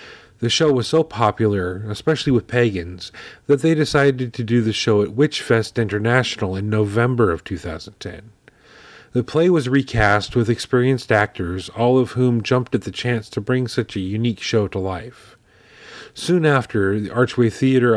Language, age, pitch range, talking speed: English, 40-59, 105-130 Hz, 165 wpm